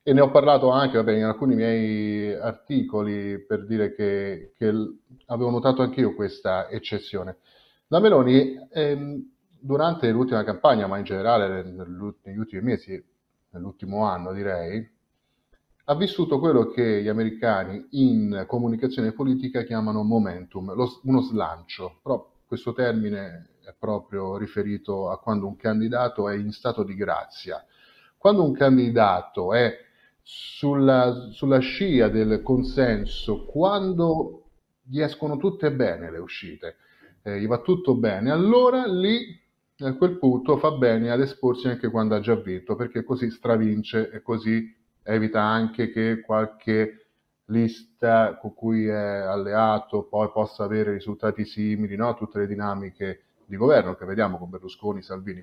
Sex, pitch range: male, 105-130 Hz